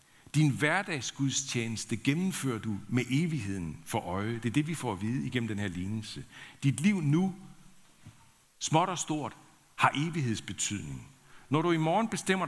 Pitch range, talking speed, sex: 95-130 Hz, 155 wpm, male